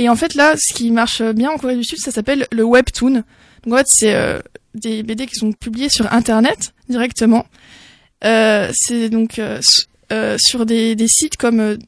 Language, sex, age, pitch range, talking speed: French, female, 20-39, 230-275 Hz, 190 wpm